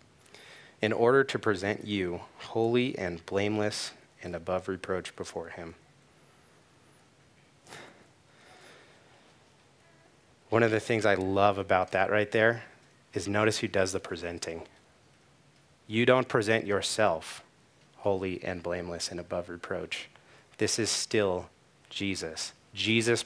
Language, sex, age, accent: English, male, 30-49, American